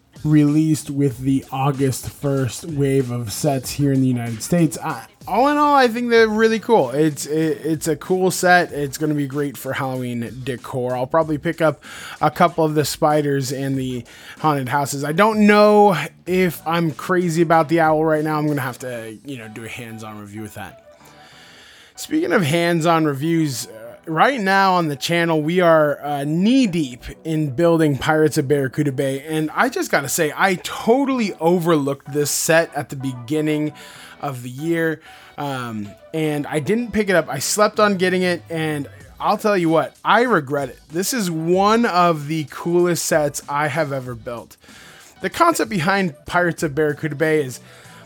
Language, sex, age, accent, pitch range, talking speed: English, male, 20-39, American, 140-175 Hz, 185 wpm